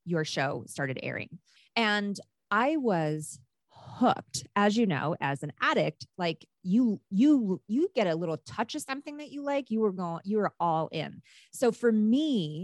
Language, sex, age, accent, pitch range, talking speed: English, female, 30-49, American, 155-215 Hz, 175 wpm